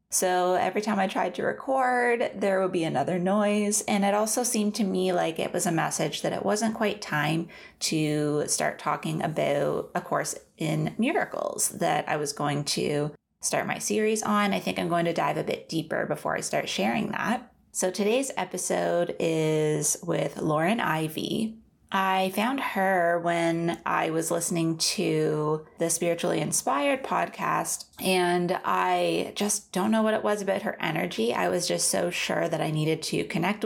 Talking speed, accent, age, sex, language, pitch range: 175 wpm, American, 20-39, female, English, 165-210 Hz